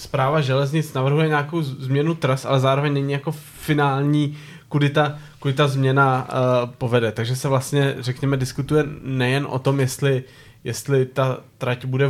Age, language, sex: 20-39, Czech, male